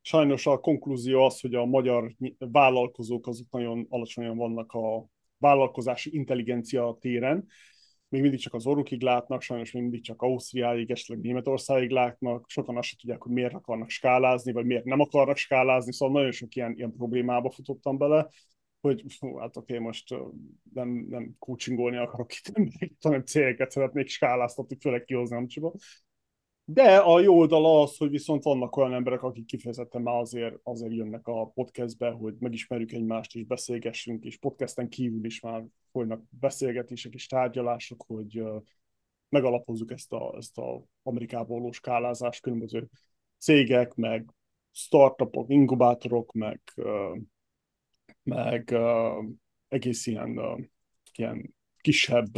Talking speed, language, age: 140 wpm, Hungarian, 30-49